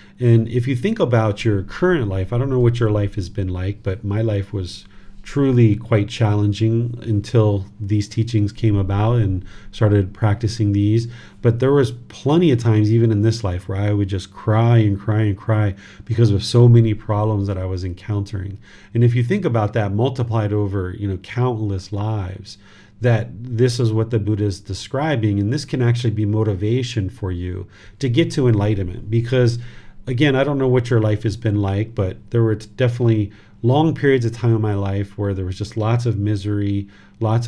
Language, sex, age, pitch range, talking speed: English, male, 40-59, 100-120 Hz, 195 wpm